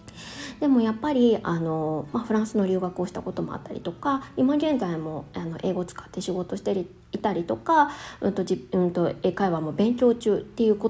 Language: Japanese